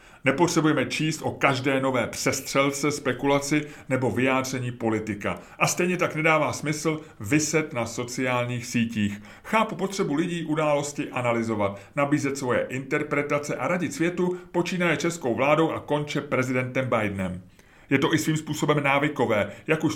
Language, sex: English, male